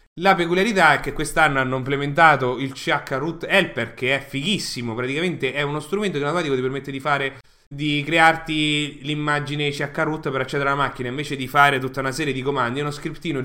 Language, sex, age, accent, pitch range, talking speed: English, male, 30-49, Italian, 130-175 Hz, 185 wpm